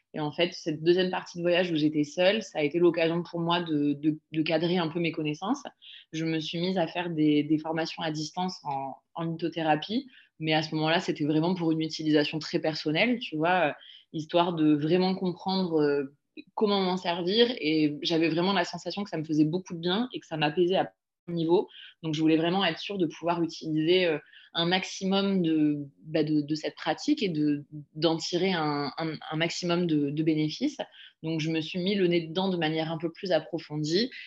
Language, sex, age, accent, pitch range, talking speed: French, female, 20-39, French, 155-180 Hz, 210 wpm